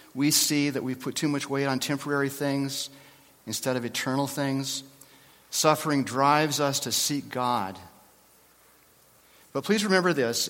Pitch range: 130-160 Hz